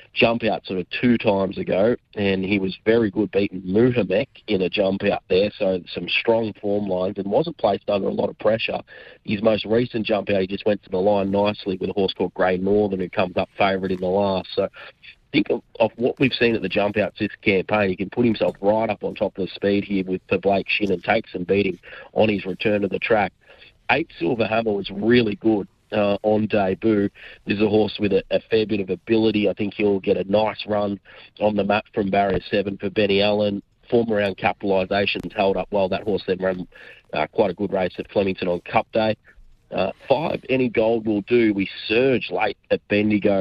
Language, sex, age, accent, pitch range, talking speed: English, male, 30-49, Australian, 95-110 Hz, 225 wpm